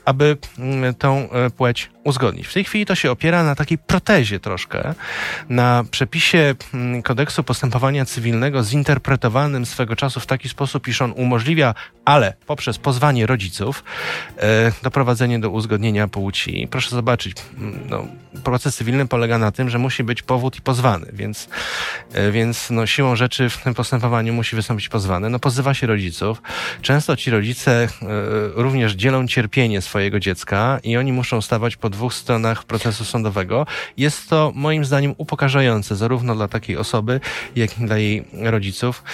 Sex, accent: male, native